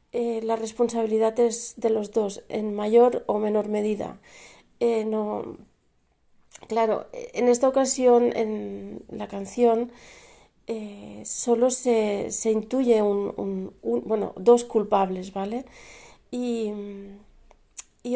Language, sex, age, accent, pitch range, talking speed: Spanish, female, 40-59, Spanish, 220-250 Hz, 115 wpm